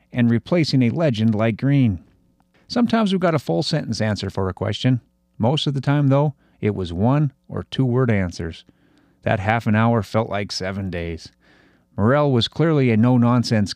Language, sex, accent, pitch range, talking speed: English, male, American, 105-135 Hz, 180 wpm